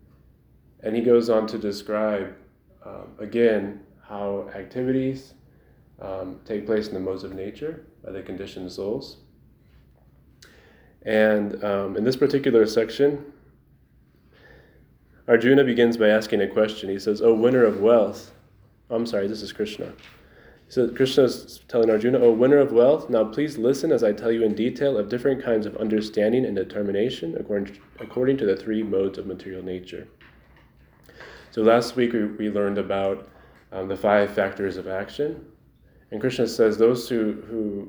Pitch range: 100-120 Hz